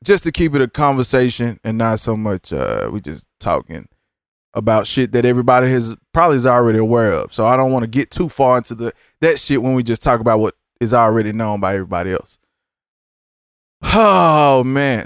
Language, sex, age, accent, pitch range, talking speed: English, male, 20-39, American, 110-140 Hz, 200 wpm